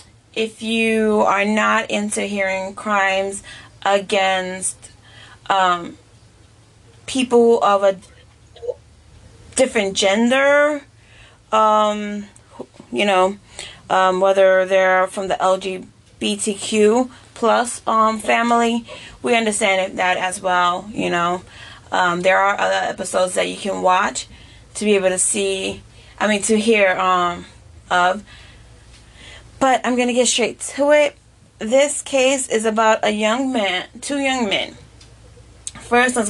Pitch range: 185-225 Hz